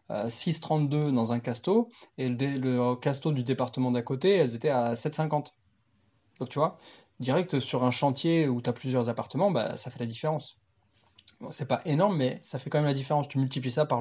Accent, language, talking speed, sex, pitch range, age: French, French, 195 wpm, male, 125-155 Hz, 20-39